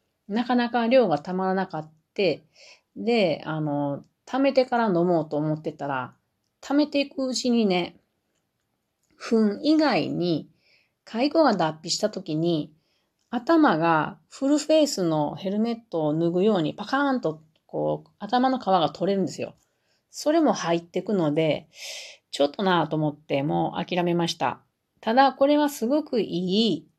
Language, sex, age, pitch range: Japanese, female, 40-59, 155-240 Hz